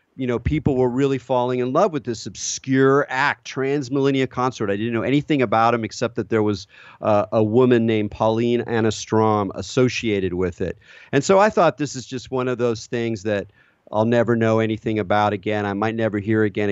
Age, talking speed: 40-59, 200 wpm